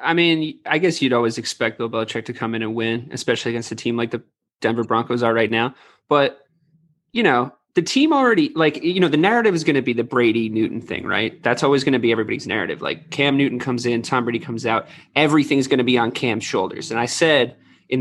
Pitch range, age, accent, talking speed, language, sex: 120-145 Hz, 20-39, American, 235 wpm, English, male